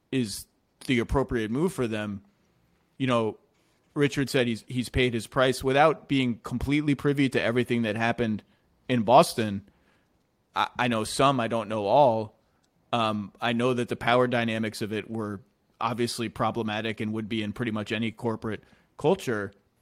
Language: English